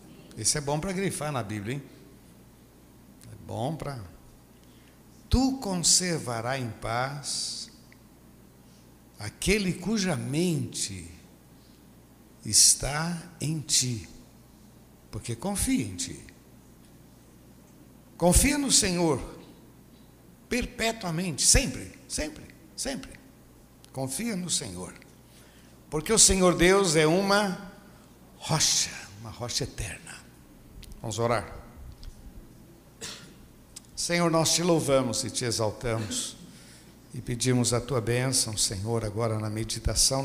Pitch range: 110-150 Hz